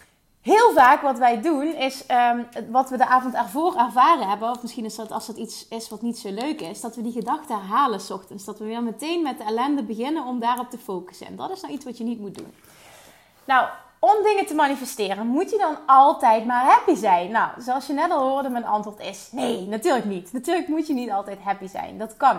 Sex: female